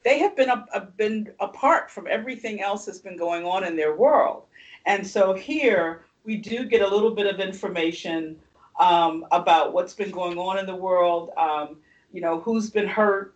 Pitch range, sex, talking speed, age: 165-200 Hz, female, 190 wpm, 50-69